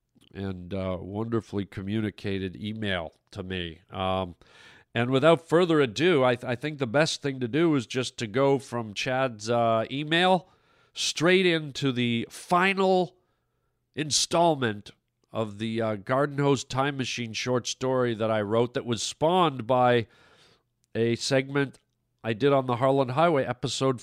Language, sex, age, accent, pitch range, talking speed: English, male, 50-69, American, 115-135 Hz, 145 wpm